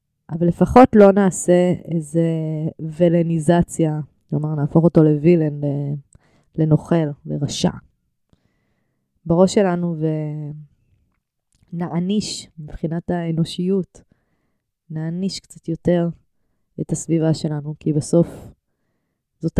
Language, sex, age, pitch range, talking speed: Hebrew, female, 20-39, 150-180 Hz, 80 wpm